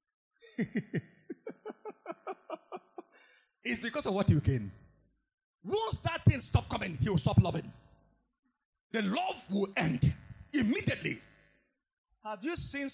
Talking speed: 105 wpm